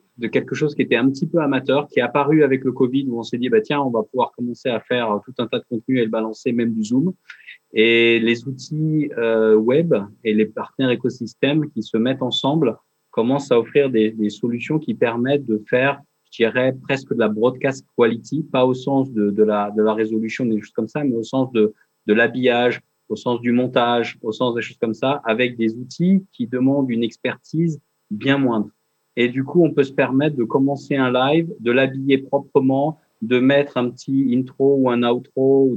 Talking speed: 215 wpm